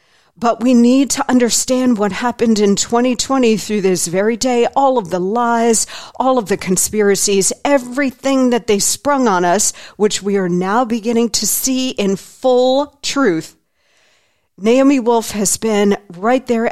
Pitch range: 200-250 Hz